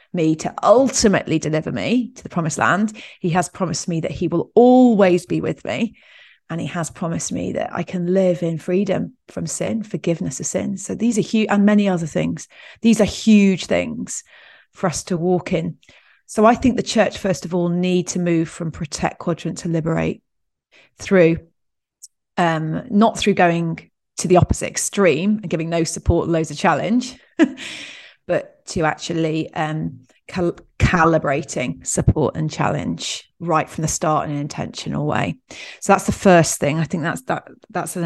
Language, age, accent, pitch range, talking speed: English, 30-49, British, 165-200 Hz, 180 wpm